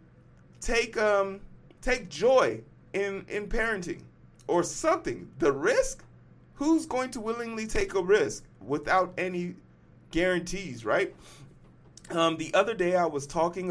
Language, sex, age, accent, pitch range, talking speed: English, male, 30-49, American, 130-190 Hz, 125 wpm